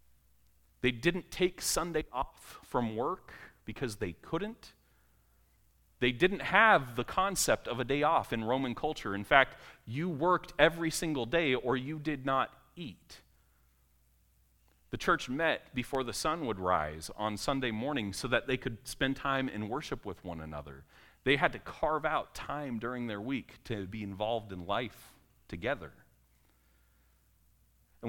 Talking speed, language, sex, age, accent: 155 wpm, English, male, 40-59, American